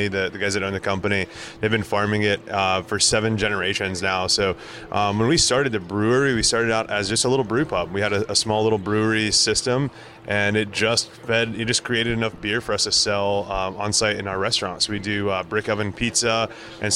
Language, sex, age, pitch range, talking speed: English, male, 20-39, 100-120 Hz, 225 wpm